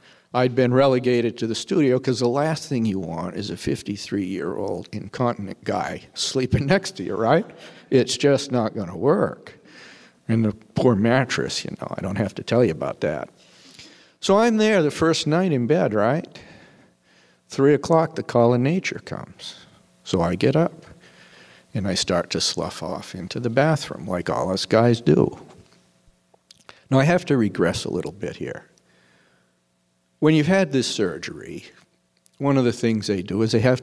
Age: 50-69